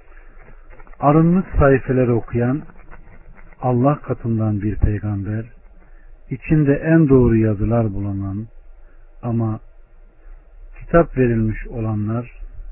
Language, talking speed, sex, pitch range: Turkish, 75 wpm, male, 100-130 Hz